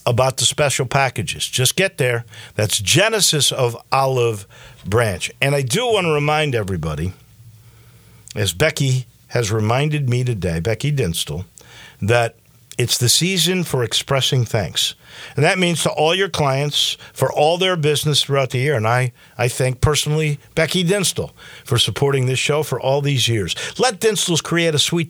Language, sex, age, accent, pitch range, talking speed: English, male, 50-69, American, 120-160 Hz, 165 wpm